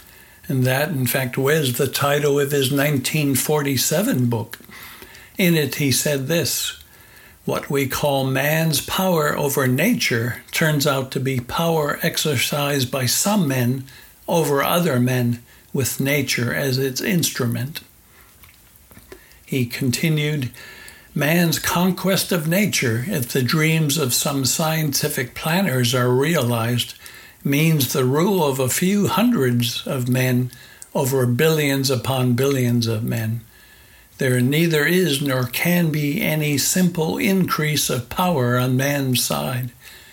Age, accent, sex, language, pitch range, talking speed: 60-79, American, male, English, 125-155 Hz, 125 wpm